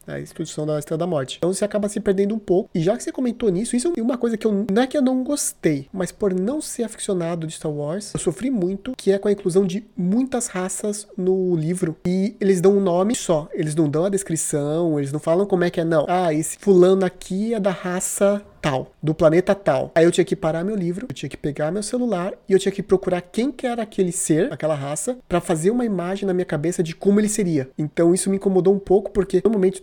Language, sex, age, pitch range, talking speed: Portuguese, male, 30-49, 160-200 Hz, 255 wpm